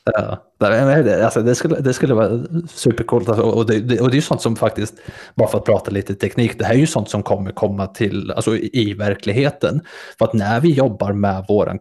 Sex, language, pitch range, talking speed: male, Swedish, 100-120 Hz, 205 wpm